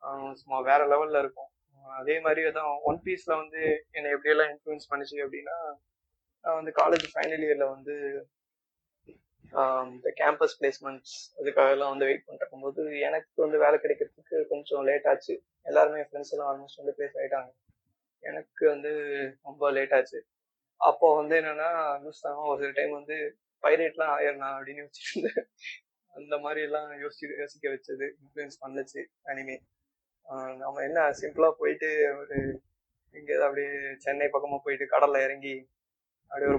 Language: Tamil